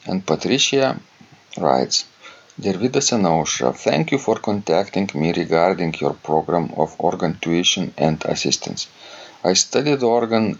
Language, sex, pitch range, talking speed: English, male, 85-95 Hz, 120 wpm